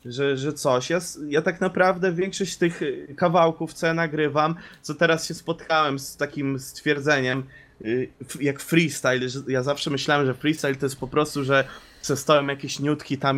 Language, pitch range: Polish, 145-175 Hz